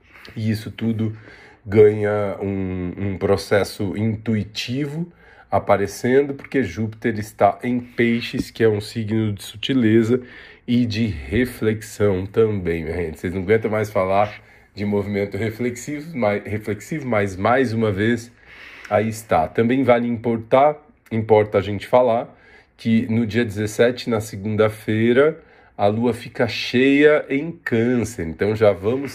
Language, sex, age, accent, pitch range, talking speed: Portuguese, male, 40-59, Brazilian, 100-120 Hz, 125 wpm